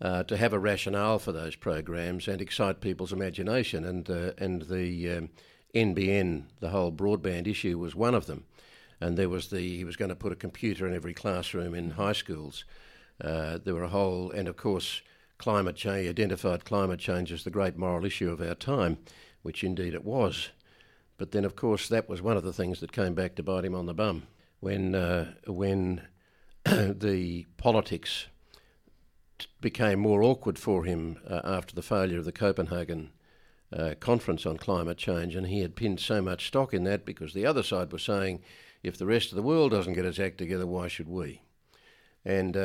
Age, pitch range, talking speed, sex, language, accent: 50-69, 85-100 Hz, 195 wpm, male, English, Australian